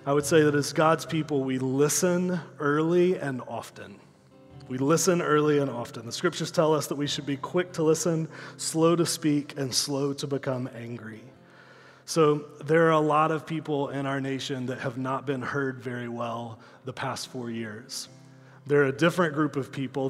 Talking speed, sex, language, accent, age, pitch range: 190 wpm, male, English, American, 30-49, 130-155 Hz